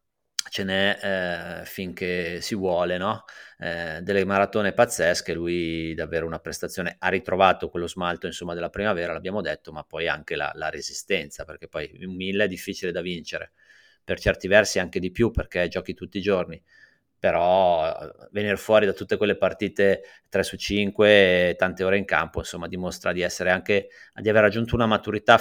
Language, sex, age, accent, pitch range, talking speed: Italian, male, 30-49, native, 90-115 Hz, 175 wpm